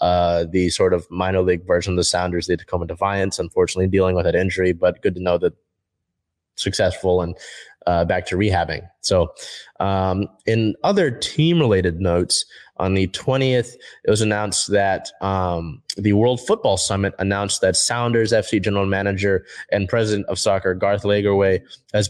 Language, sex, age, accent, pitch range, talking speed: English, male, 20-39, American, 95-110 Hz, 165 wpm